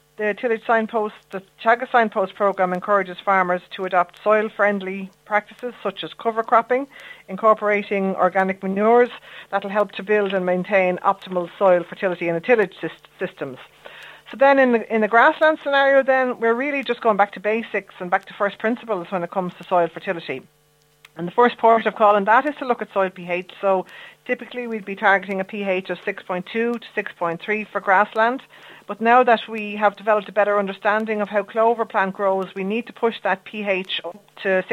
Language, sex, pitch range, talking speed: English, female, 190-225 Hz, 185 wpm